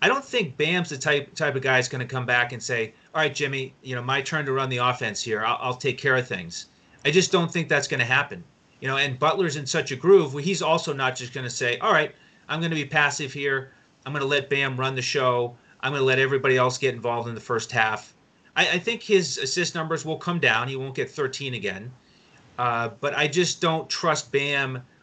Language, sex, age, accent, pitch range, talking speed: English, male, 30-49, American, 125-150 Hz, 255 wpm